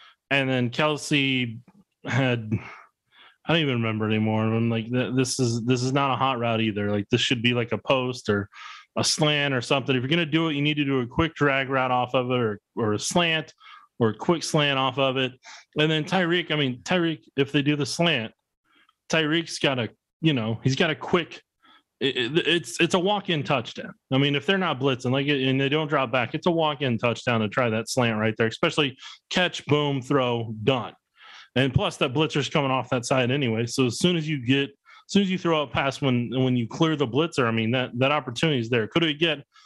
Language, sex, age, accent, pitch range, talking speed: English, male, 20-39, American, 125-155 Hz, 225 wpm